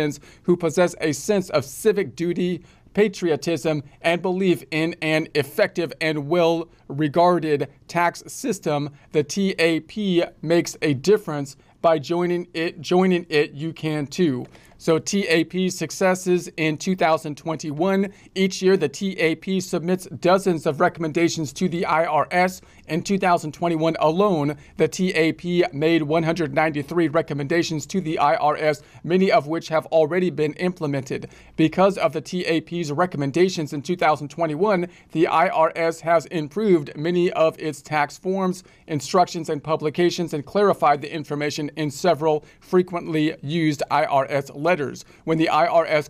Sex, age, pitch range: male, 40-59, 150-180 Hz